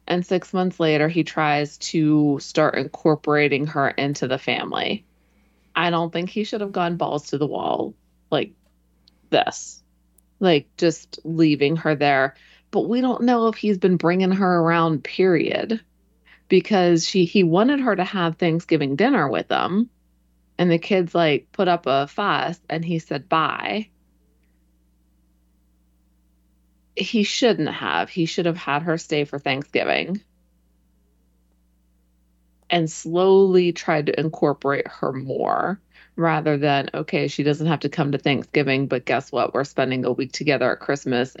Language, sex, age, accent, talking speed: English, female, 30-49, American, 150 wpm